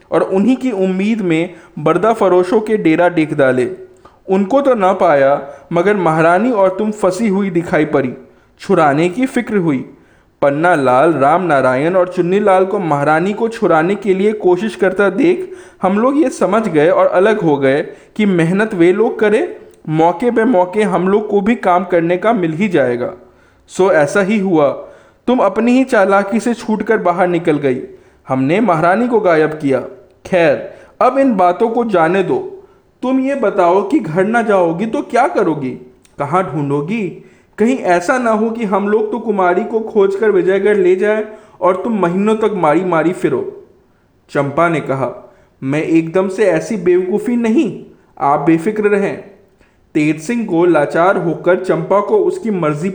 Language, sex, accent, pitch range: Hindi, male, native, 170-220 Hz